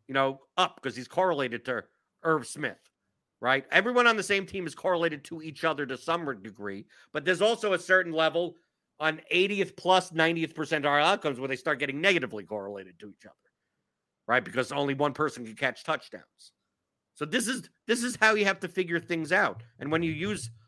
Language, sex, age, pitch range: English, male, 50-69, 130-185 Hz